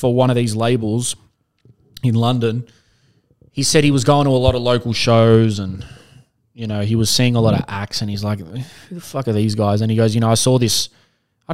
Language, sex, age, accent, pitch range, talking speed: English, male, 20-39, Australian, 110-135 Hz, 240 wpm